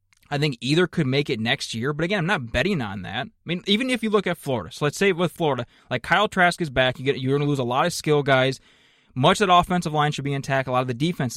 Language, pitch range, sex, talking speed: English, 125-165 Hz, male, 310 wpm